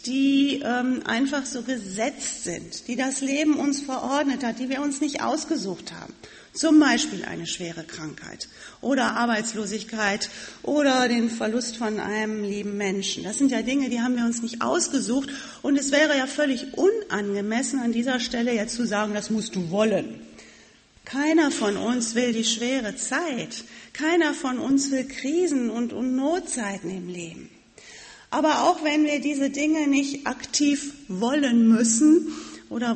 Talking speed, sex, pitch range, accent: 155 wpm, female, 230-290 Hz, German